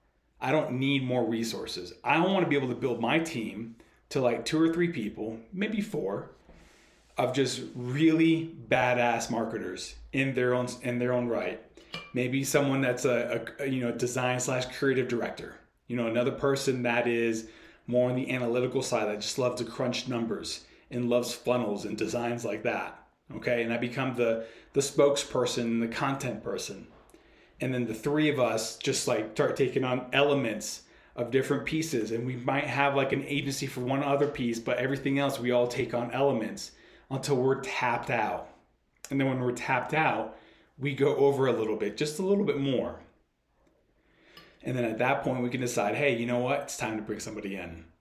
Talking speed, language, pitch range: 190 wpm, English, 115-140 Hz